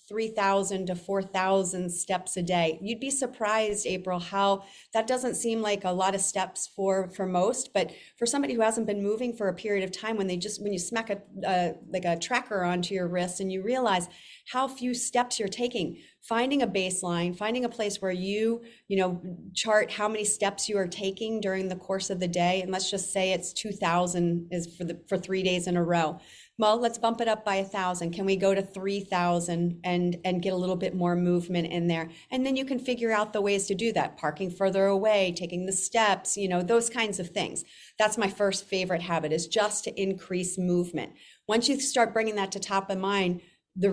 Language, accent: English, American